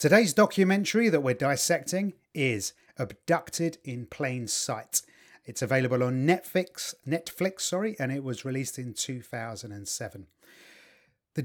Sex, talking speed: male, 120 wpm